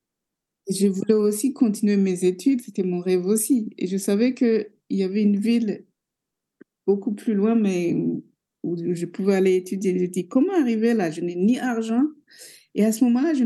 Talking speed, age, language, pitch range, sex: 190 wpm, 60-79, French, 190-240 Hz, female